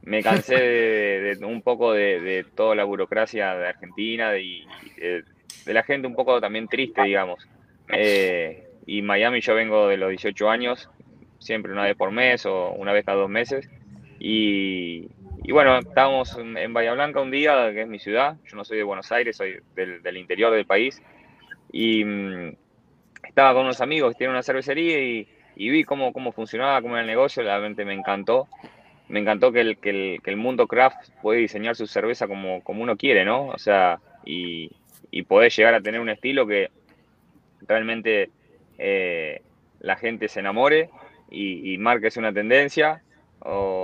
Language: Spanish